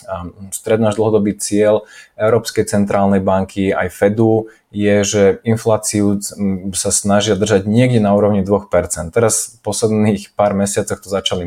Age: 20-39